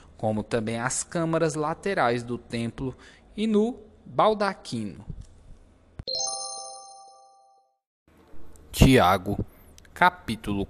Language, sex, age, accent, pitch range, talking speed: Portuguese, male, 20-39, Brazilian, 90-135 Hz, 65 wpm